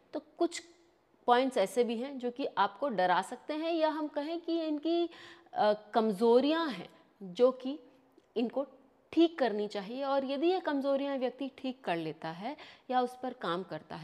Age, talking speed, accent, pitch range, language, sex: 30-49, 165 wpm, Indian, 215-300 Hz, English, female